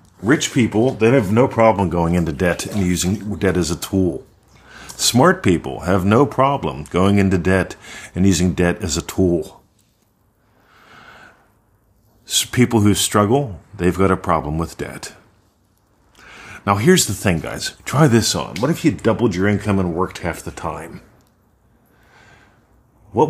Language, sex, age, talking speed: English, male, 40-59, 150 wpm